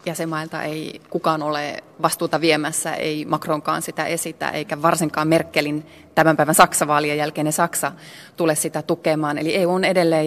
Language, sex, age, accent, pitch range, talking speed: Finnish, female, 30-49, native, 155-190 Hz, 145 wpm